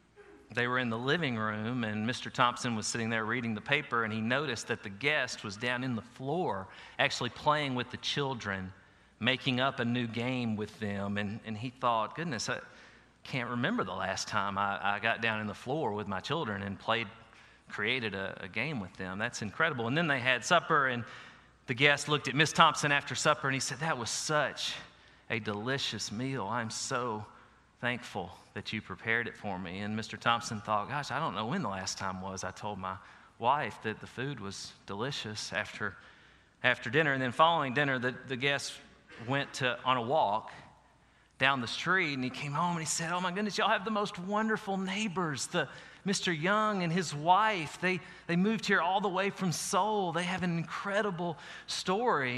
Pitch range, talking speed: 110-160 Hz, 205 wpm